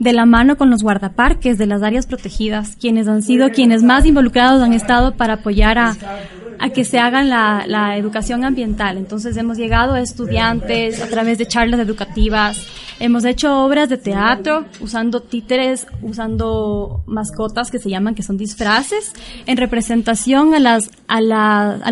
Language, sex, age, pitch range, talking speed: Spanish, female, 20-39, 215-255 Hz, 160 wpm